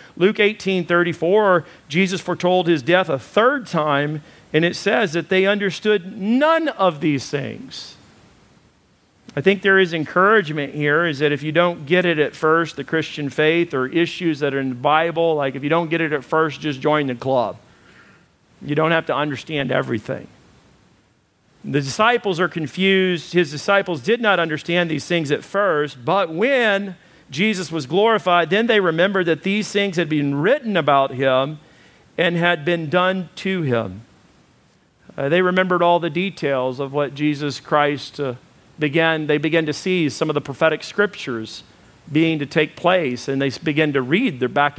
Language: English